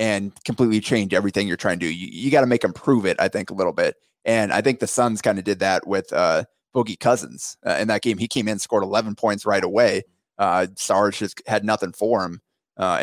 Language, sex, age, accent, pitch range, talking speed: English, male, 30-49, American, 100-120 Hz, 250 wpm